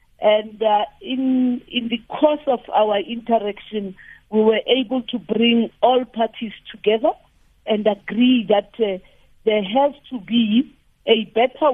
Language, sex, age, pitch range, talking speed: English, female, 50-69, 210-245 Hz, 140 wpm